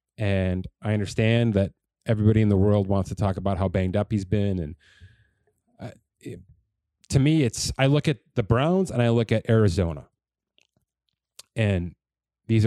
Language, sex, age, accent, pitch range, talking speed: English, male, 30-49, American, 95-115 Hz, 155 wpm